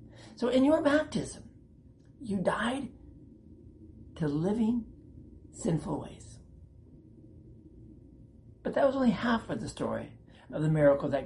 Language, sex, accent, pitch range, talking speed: English, male, American, 150-235 Hz, 115 wpm